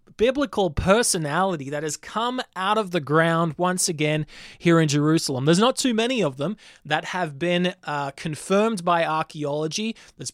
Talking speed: 165 wpm